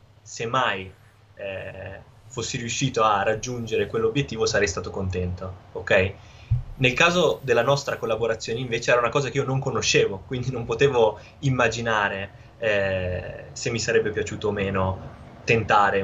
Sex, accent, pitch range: male, native, 110-140 Hz